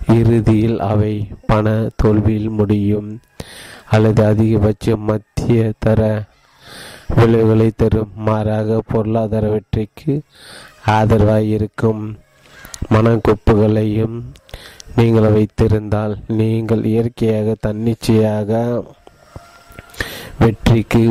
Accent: native